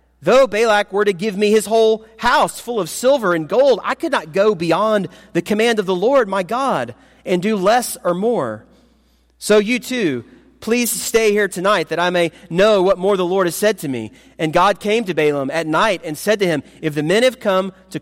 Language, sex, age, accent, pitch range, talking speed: English, male, 30-49, American, 165-220 Hz, 225 wpm